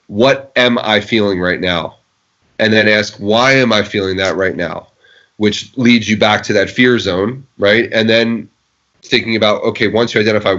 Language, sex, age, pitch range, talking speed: English, male, 30-49, 100-115 Hz, 185 wpm